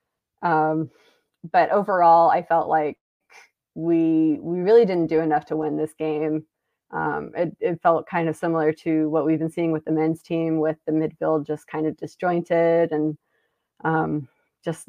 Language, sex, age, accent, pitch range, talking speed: English, female, 20-39, American, 155-165 Hz, 170 wpm